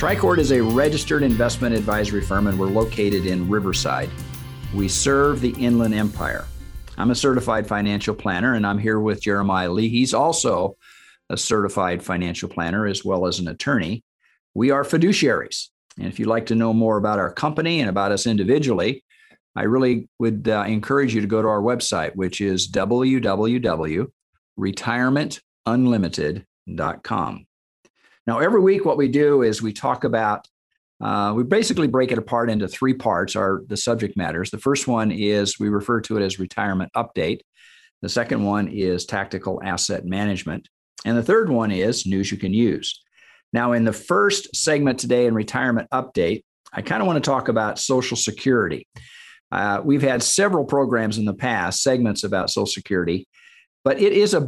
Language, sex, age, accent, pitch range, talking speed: English, male, 50-69, American, 100-125 Hz, 170 wpm